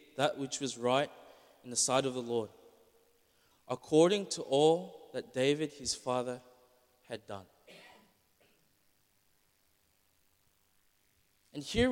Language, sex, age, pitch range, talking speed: English, male, 20-39, 130-180 Hz, 105 wpm